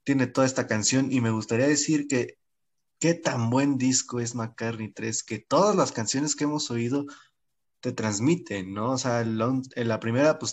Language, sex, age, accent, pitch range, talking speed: Spanish, male, 20-39, Mexican, 115-140 Hz, 180 wpm